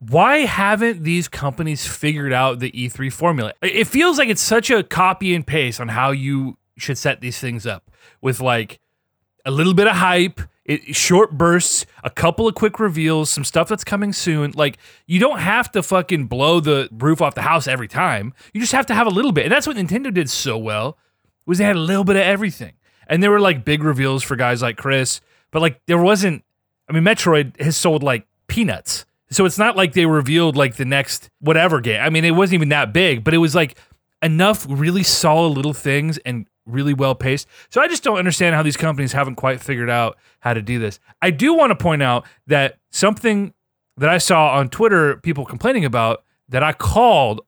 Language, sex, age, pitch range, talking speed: English, male, 30-49, 130-185 Hz, 215 wpm